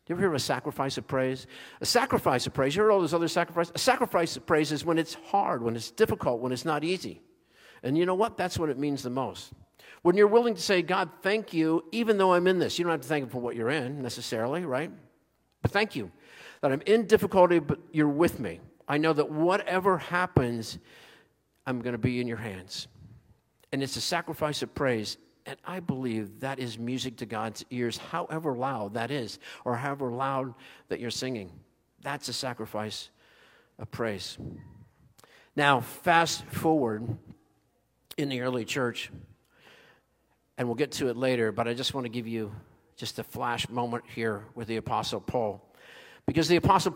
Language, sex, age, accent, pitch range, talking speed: English, male, 50-69, American, 120-165 Hz, 195 wpm